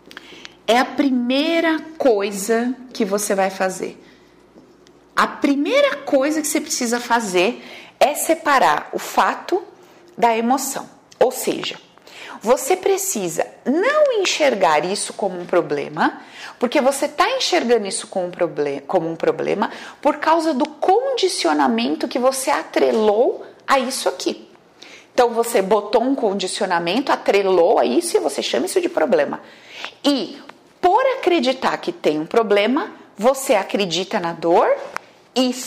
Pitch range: 225-330 Hz